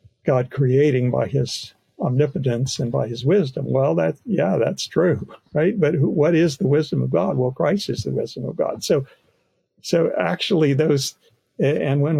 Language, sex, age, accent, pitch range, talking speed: English, male, 60-79, American, 130-160 Hz, 170 wpm